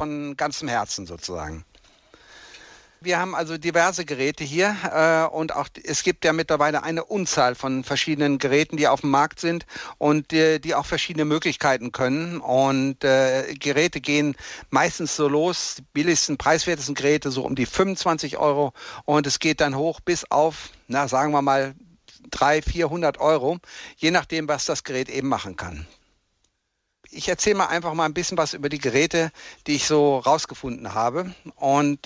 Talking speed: 165 wpm